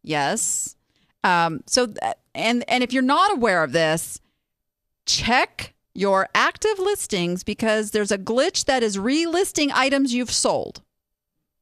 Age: 40-59